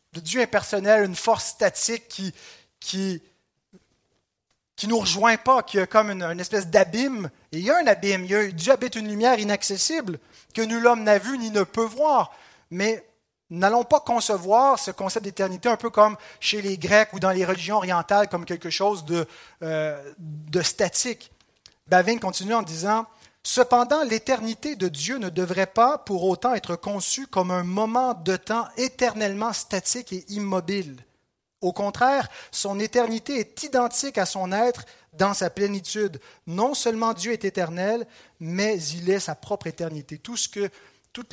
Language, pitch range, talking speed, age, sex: French, 180-230 Hz, 175 wpm, 30-49, male